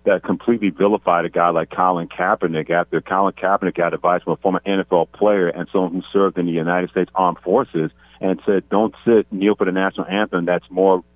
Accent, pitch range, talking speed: American, 90-100 Hz, 210 wpm